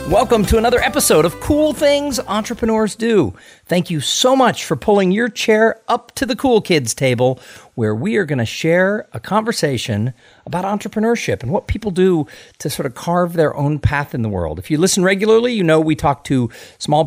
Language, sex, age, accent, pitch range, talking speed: English, male, 50-69, American, 120-180 Hz, 200 wpm